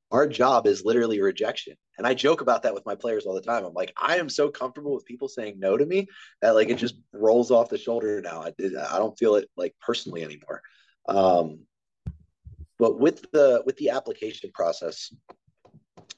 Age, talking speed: 30-49, 195 wpm